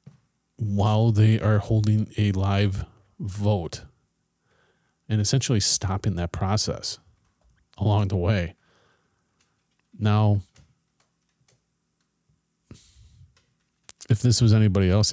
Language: English